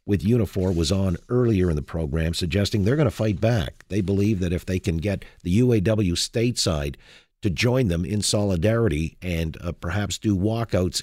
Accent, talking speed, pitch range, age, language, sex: American, 185 wpm, 90-110 Hz, 50-69, English, male